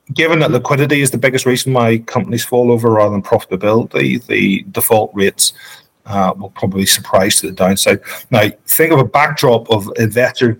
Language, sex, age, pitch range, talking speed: English, male, 40-59, 100-120 Hz, 175 wpm